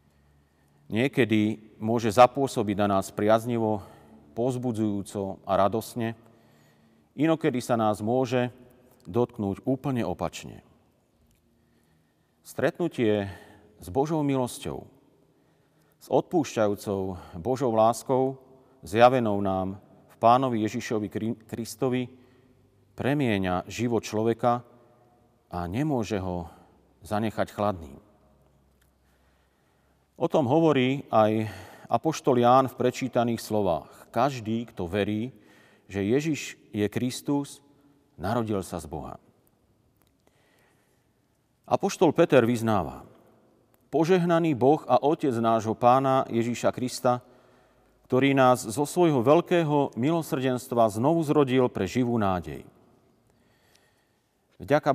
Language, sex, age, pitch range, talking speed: Slovak, male, 40-59, 105-130 Hz, 90 wpm